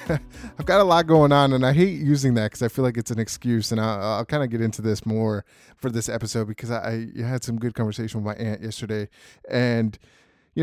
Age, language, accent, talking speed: 20-39, English, American, 235 wpm